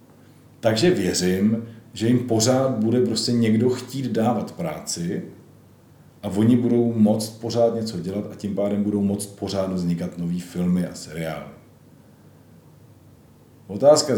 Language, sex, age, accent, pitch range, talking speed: Czech, male, 40-59, native, 105-115 Hz, 125 wpm